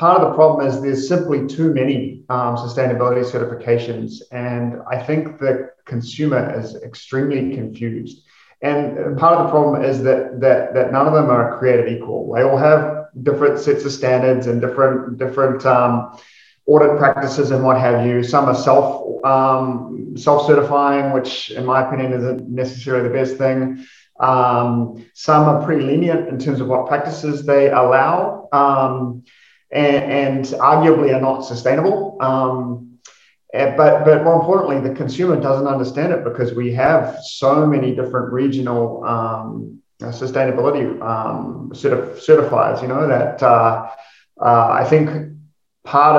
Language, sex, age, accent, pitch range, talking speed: English, male, 40-59, Australian, 125-145 Hz, 145 wpm